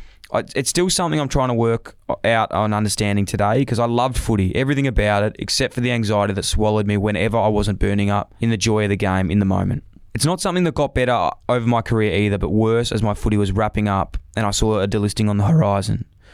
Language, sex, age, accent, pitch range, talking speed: English, male, 20-39, Australian, 100-130 Hz, 240 wpm